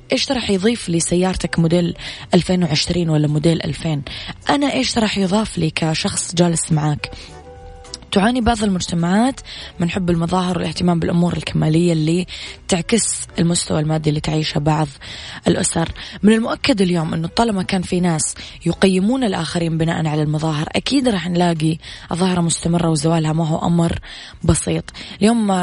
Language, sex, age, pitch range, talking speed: Arabic, female, 20-39, 165-195 Hz, 135 wpm